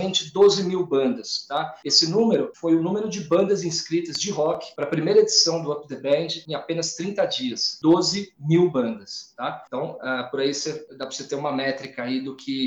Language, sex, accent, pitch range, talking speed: Portuguese, male, Brazilian, 145-205 Hz, 210 wpm